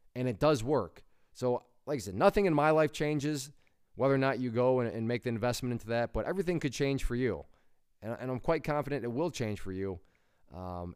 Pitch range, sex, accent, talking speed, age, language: 105-130 Hz, male, American, 230 wpm, 20-39, English